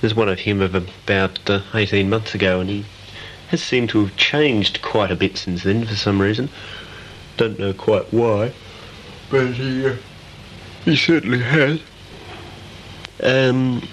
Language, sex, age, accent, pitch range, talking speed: English, male, 50-69, Australian, 95-110 Hz, 155 wpm